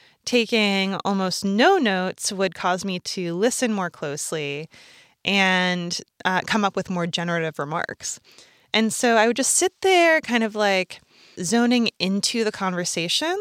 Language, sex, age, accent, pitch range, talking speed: English, female, 20-39, American, 175-225 Hz, 150 wpm